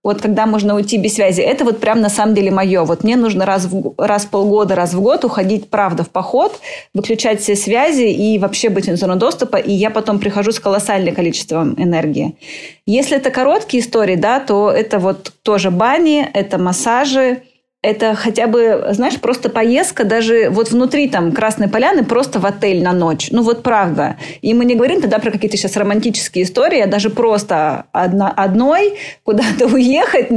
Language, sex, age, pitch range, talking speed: Russian, female, 20-39, 195-235 Hz, 185 wpm